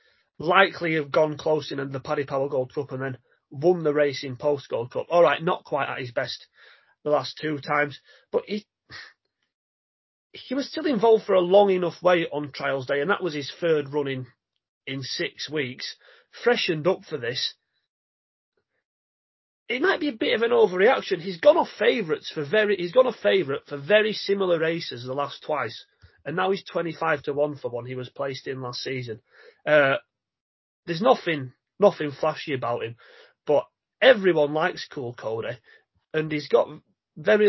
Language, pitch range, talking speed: English, 135-180 Hz, 180 wpm